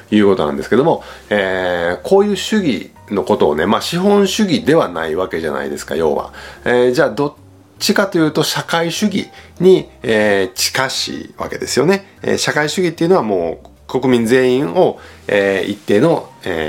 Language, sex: Japanese, male